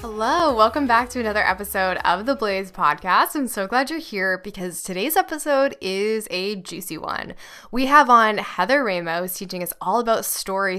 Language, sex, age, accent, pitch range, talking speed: English, female, 10-29, American, 185-260 Hz, 180 wpm